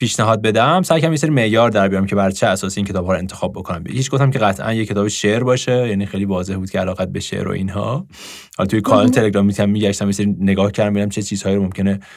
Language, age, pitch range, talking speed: English, 20-39, 105-150 Hz, 245 wpm